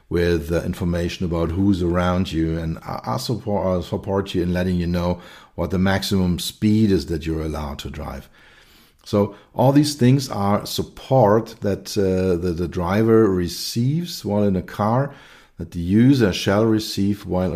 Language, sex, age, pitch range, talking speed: English, male, 50-69, 85-110 Hz, 165 wpm